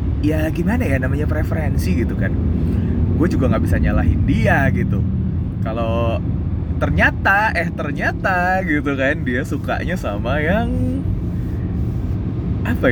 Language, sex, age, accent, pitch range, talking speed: Indonesian, male, 20-39, native, 90-100 Hz, 115 wpm